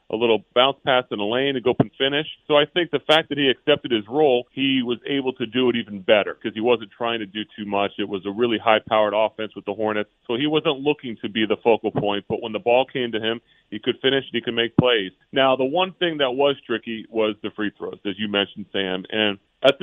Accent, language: American, English